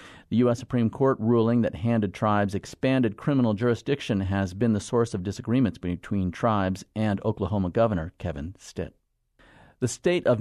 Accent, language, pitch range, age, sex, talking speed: American, English, 95-120 Hz, 40-59, male, 155 wpm